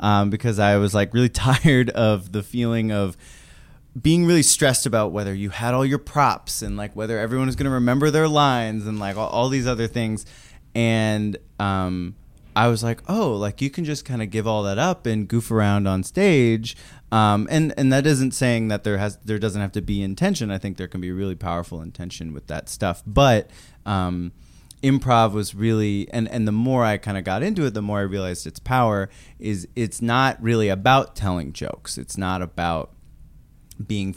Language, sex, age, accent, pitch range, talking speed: English, male, 20-39, American, 95-120 Hz, 205 wpm